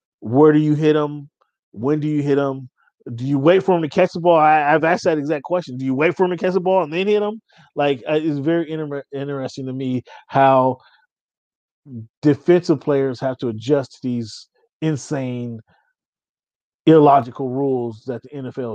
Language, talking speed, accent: English, 190 wpm, American